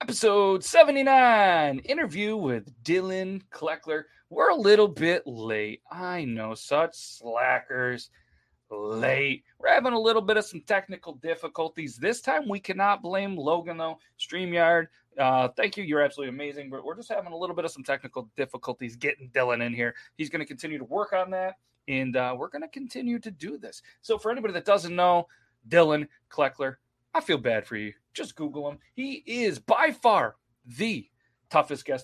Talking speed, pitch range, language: 175 wpm, 130-210 Hz, English